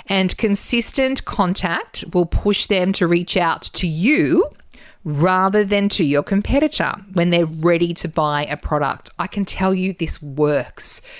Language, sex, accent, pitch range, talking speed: English, female, Australian, 160-200 Hz, 155 wpm